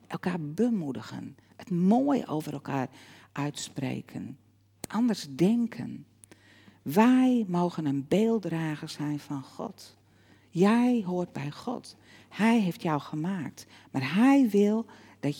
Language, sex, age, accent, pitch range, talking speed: Dutch, female, 50-69, Dutch, 135-205 Hz, 110 wpm